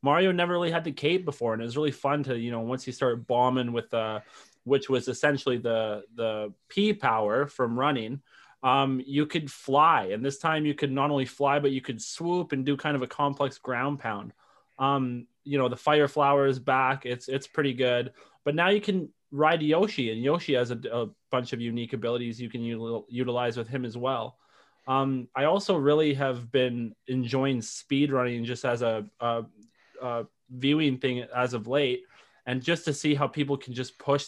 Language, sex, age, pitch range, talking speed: English, male, 20-39, 120-140 Hz, 205 wpm